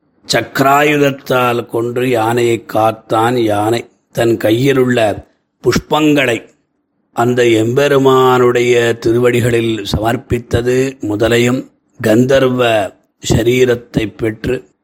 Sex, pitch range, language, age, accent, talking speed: male, 115-135 Hz, Tamil, 30-49, native, 70 wpm